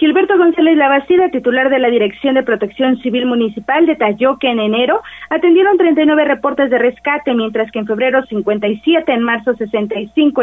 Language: Spanish